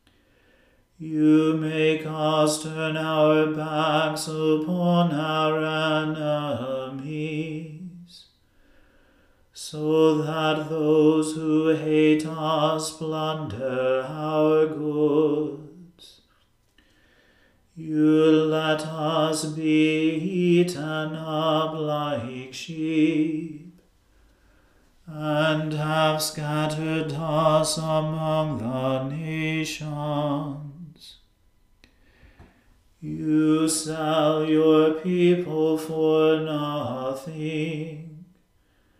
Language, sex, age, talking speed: English, male, 40-59, 60 wpm